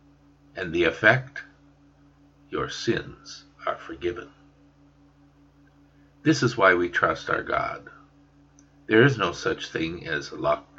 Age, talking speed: 60-79, 115 wpm